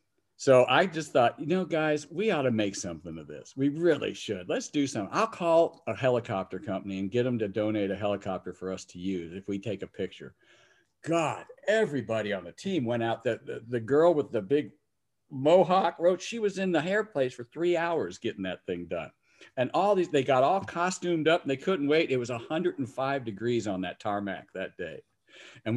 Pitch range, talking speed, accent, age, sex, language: 105-145 Hz, 210 wpm, American, 50-69, male, English